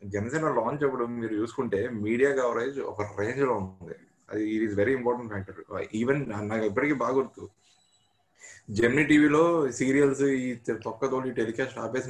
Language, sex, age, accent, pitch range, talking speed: Telugu, male, 20-39, native, 105-135 Hz, 140 wpm